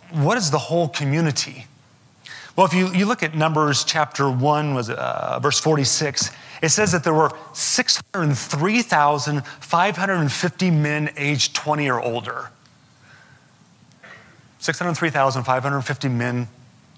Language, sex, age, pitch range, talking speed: English, male, 30-49, 120-150 Hz, 110 wpm